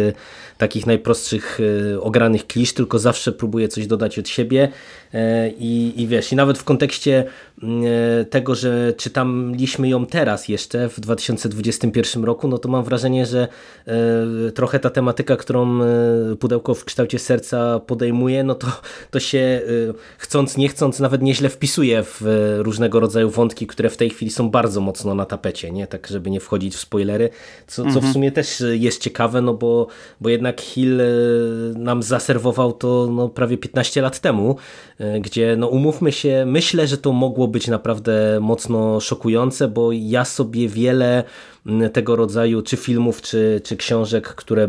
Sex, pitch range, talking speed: male, 105-125 Hz, 150 wpm